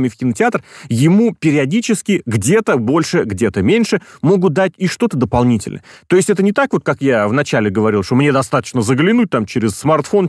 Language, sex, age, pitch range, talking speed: Russian, male, 30-49, 125-190 Hz, 175 wpm